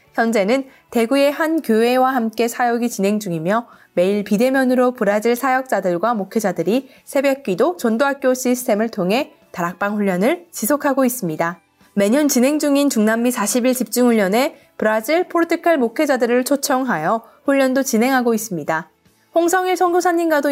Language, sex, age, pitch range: Korean, female, 20-39, 210-280 Hz